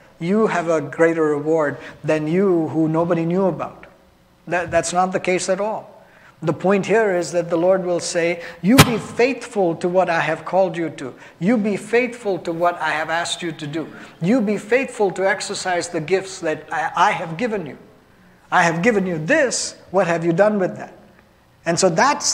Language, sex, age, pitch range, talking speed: English, male, 50-69, 155-190 Hz, 200 wpm